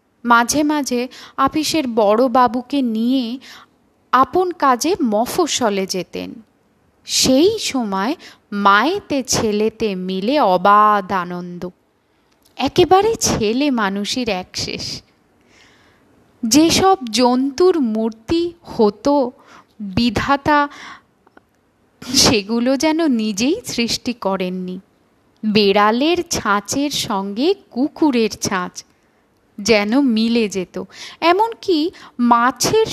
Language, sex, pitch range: Bengali, female, 220-295 Hz